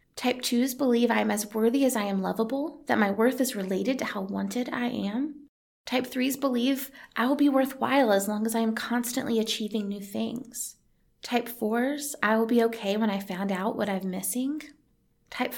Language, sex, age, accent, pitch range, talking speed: English, female, 20-39, American, 215-265 Hz, 195 wpm